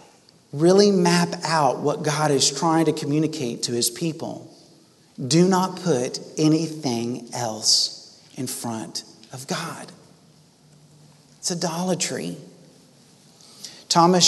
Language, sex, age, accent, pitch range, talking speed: English, male, 40-59, American, 130-165 Hz, 100 wpm